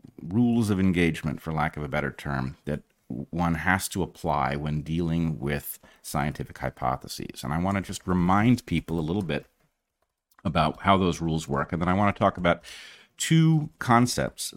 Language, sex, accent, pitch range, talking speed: English, male, American, 70-95 Hz, 175 wpm